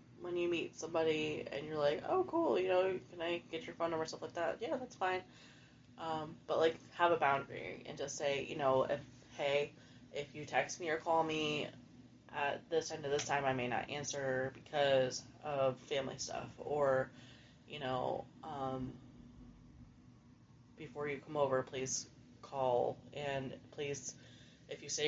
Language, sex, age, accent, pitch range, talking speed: English, female, 20-39, American, 135-155 Hz, 175 wpm